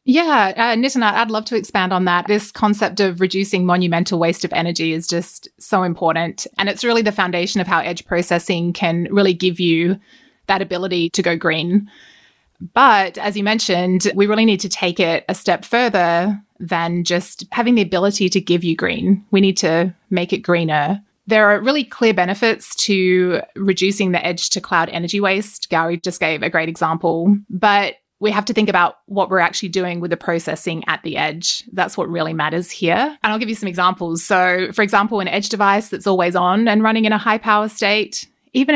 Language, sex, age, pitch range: Chinese, female, 20-39, 175-210 Hz